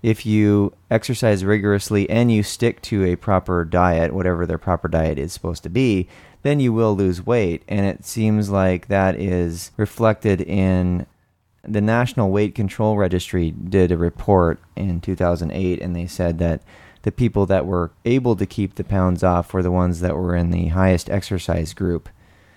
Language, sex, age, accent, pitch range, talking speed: English, male, 30-49, American, 90-105 Hz, 175 wpm